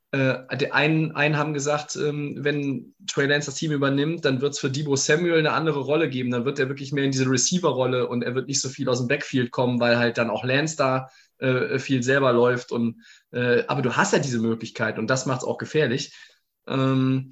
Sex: male